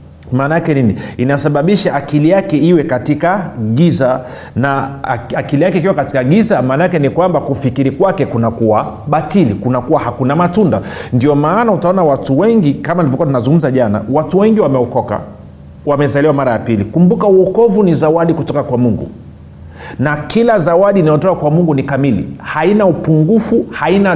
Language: Swahili